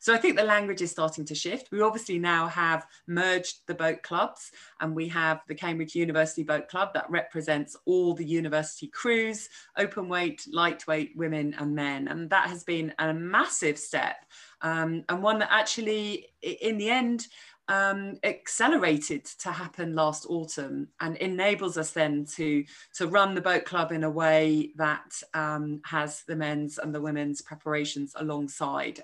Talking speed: 165 wpm